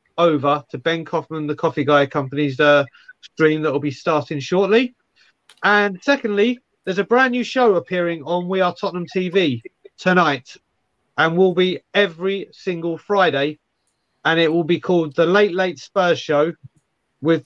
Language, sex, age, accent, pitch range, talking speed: English, male, 30-49, British, 155-185 Hz, 160 wpm